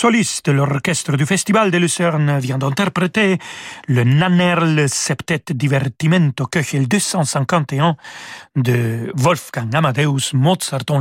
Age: 40-59